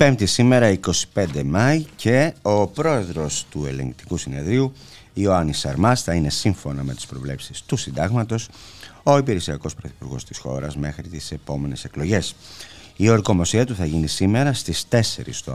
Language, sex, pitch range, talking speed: Greek, male, 75-110 Hz, 145 wpm